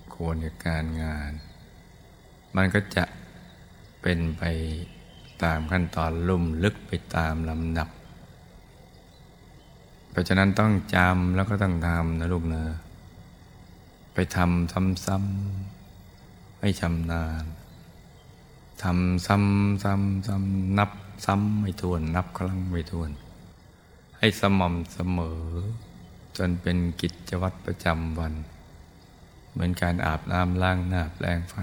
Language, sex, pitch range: Thai, male, 85-95 Hz